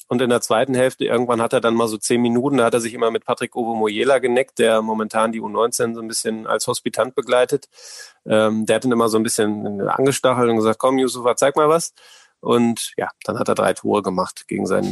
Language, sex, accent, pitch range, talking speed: German, male, German, 110-125 Hz, 235 wpm